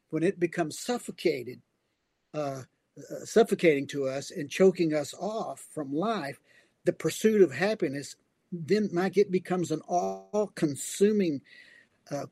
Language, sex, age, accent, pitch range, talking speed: English, male, 50-69, American, 145-180 Hz, 120 wpm